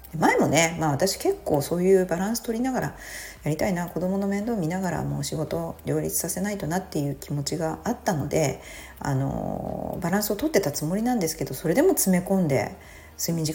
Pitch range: 140-205 Hz